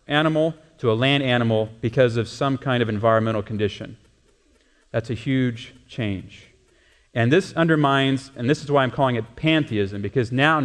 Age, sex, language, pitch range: 40-59, male, English, 115-145 Hz